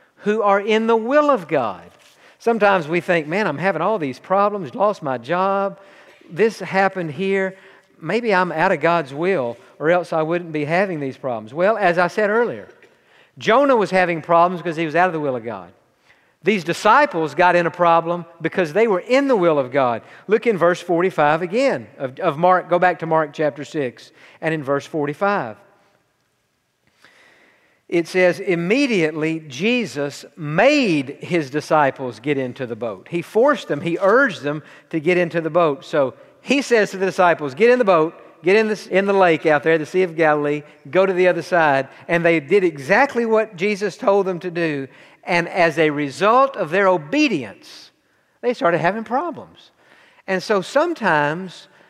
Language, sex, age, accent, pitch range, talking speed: English, male, 50-69, American, 160-205 Hz, 185 wpm